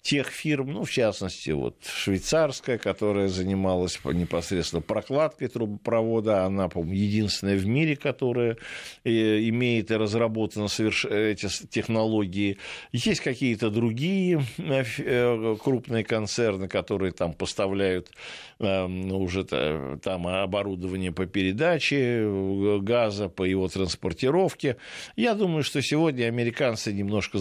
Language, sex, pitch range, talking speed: Russian, male, 95-125 Hz, 105 wpm